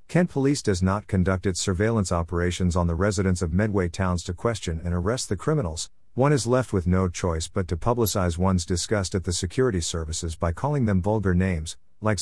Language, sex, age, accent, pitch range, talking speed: English, male, 50-69, American, 90-110 Hz, 200 wpm